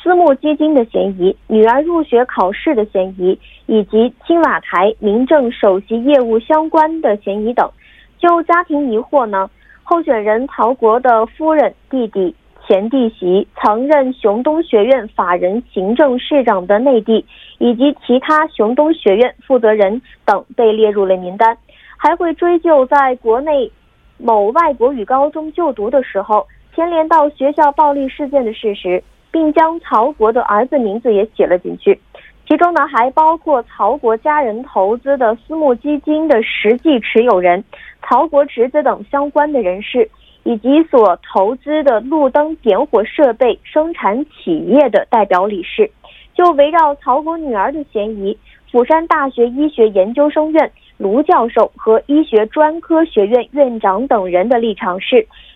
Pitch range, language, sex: 220-305 Hz, Korean, female